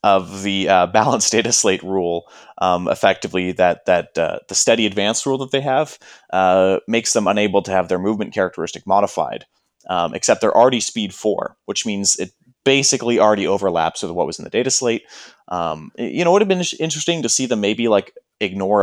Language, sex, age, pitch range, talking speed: English, male, 30-49, 95-130 Hz, 200 wpm